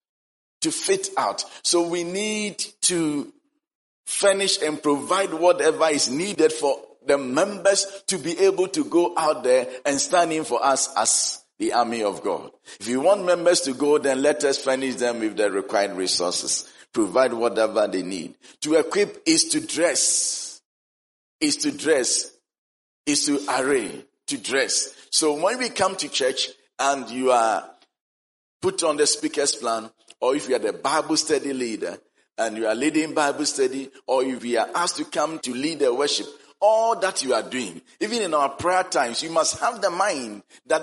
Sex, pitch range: male, 140-235 Hz